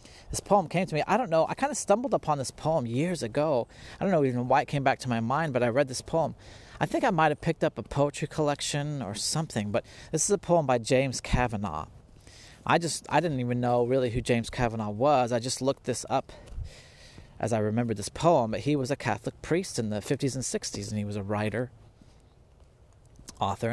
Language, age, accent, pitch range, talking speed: English, 30-49, American, 105-140 Hz, 230 wpm